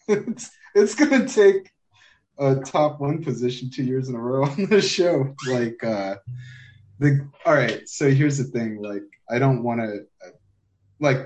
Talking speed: 160 wpm